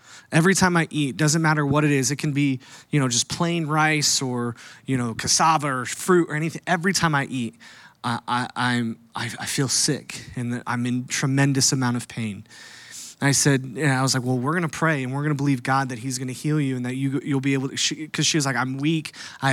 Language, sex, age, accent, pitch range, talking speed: English, male, 20-39, American, 130-155 Hz, 240 wpm